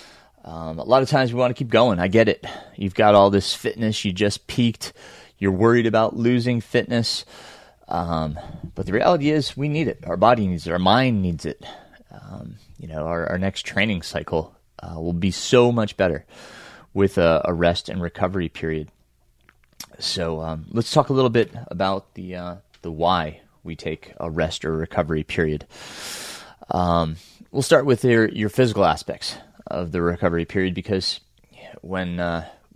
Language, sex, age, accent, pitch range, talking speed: English, male, 30-49, American, 85-110 Hz, 180 wpm